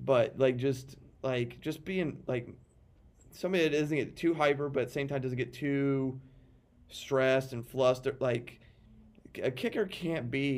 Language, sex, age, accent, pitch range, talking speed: English, male, 30-49, American, 120-140 Hz, 165 wpm